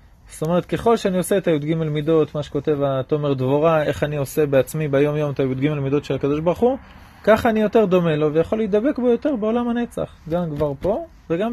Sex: male